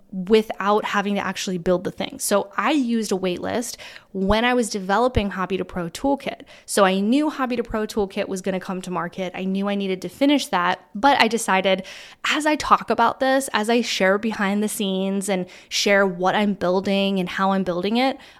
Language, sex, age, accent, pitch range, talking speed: English, female, 10-29, American, 190-230 Hz, 205 wpm